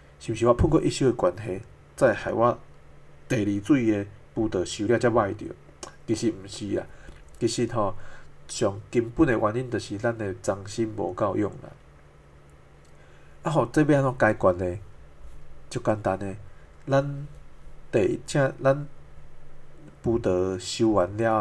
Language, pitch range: Chinese, 95-125 Hz